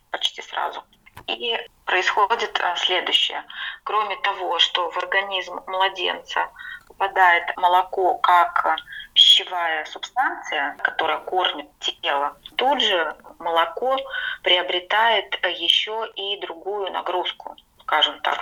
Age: 20-39